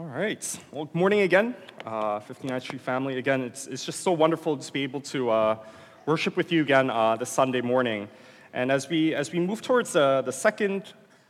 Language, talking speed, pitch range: English, 205 wpm, 125-165 Hz